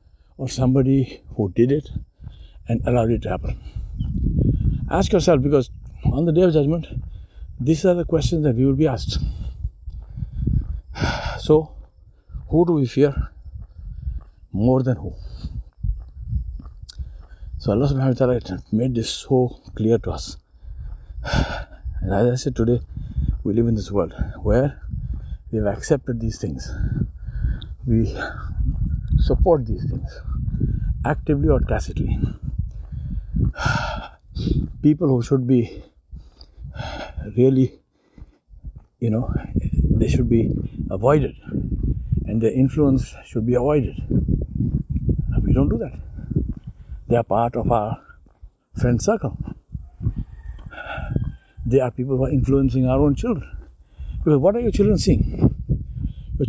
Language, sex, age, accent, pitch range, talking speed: English, male, 60-79, Indian, 85-135 Hz, 120 wpm